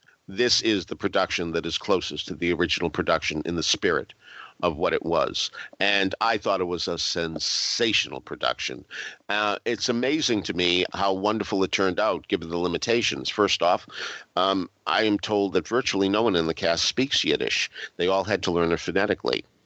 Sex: male